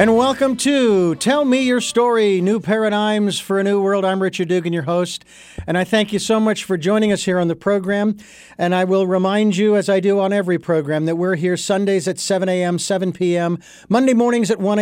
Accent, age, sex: American, 50-69, male